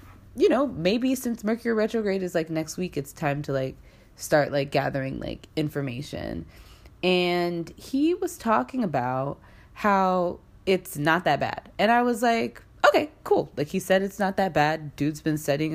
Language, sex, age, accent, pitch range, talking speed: English, female, 20-39, American, 140-180 Hz, 170 wpm